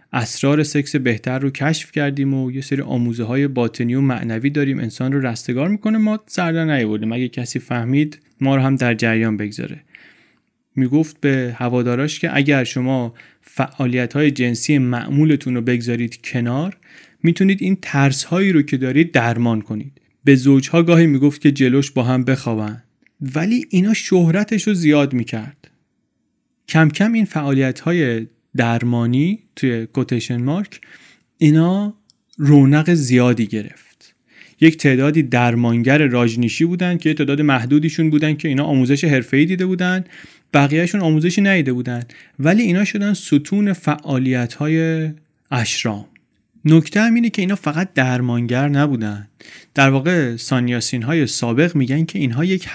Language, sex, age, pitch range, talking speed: Persian, male, 30-49, 125-160 Hz, 145 wpm